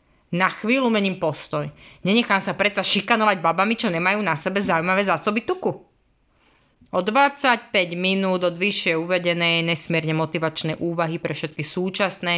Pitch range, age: 165-210 Hz, 20-39